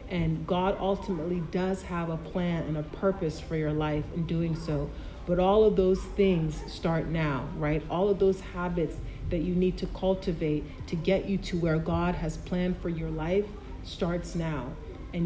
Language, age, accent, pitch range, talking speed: English, 40-59, American, 160-190 Hz, 185 wpm